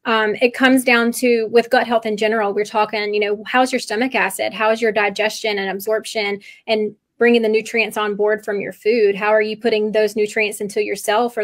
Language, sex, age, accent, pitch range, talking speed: English, female, 20-39, American, 210-235 Hz, 220 wpm